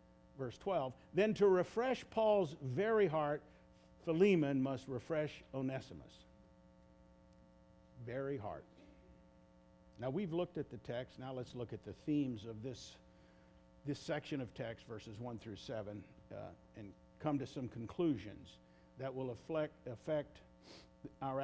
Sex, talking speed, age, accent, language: male, 130 wpm, 50-69, American, English